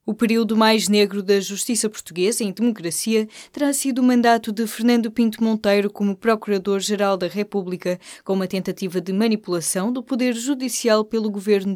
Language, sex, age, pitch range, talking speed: Portuguese, female, 20-39, 180-235 Hz, 160 wpm